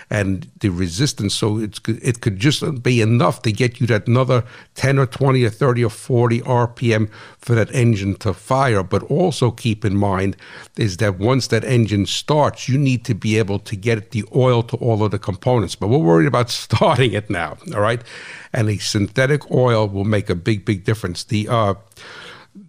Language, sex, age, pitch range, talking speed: English, male, 60-79, 105-130 Hz, 195 wpm